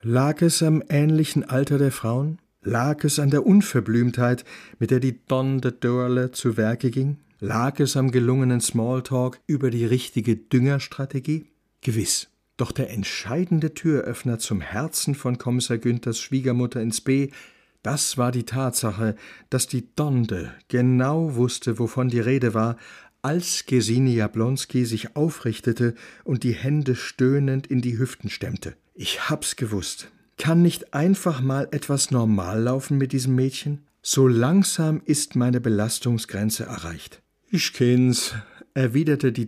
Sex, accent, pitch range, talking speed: male, German, 115-140 Hz, 140 wpm